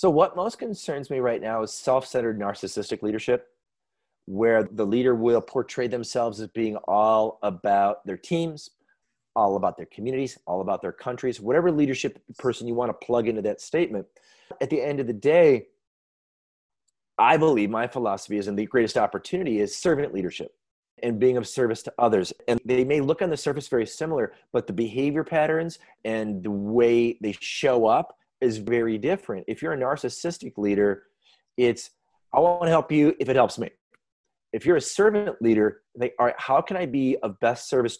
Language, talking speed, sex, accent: English, 185 wpm, male, American